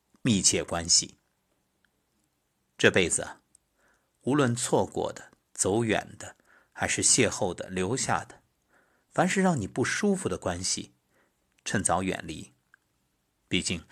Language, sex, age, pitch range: Chinese, male, 50-69, 85-145 Hz